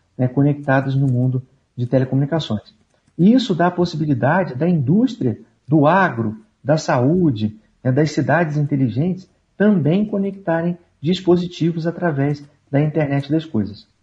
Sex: male